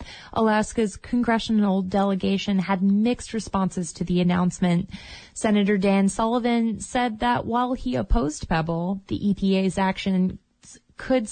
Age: 20-39